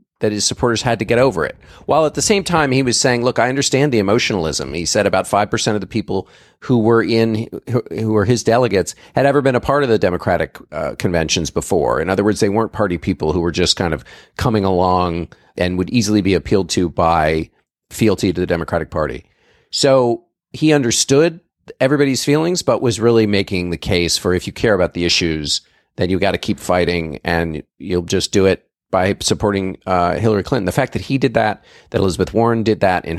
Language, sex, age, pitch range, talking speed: English, male, 40-59, 90-115 Hz, 215 wpm